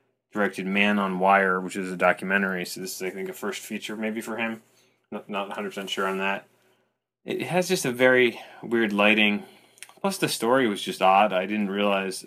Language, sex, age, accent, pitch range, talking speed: English, male, 20-39, American, 95-105 Hz, 200 wpm